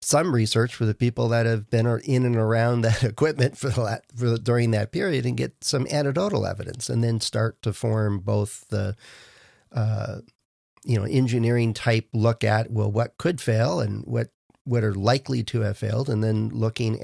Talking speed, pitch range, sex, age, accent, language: 190 wpm, 110-125 Hz, male, 50-69, American, English